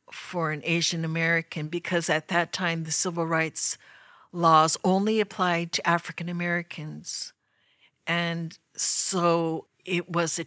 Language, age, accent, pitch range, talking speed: English, 60-79, American, 160-180 Hz, 125 wpm